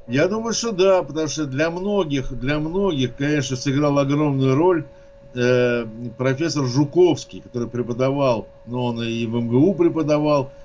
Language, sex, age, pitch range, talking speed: Russian, male, 60-79, 120-150 Hz, 140 wpm